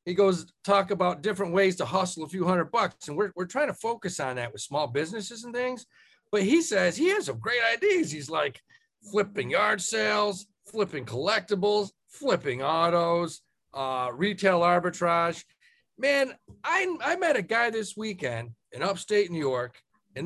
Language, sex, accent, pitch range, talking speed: English, male, American, 150-220 Hz, 170 wpm